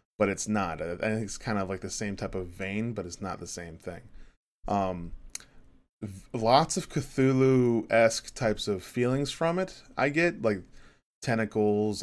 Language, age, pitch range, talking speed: English, 20-39, 95-120 Hz, 165 wpm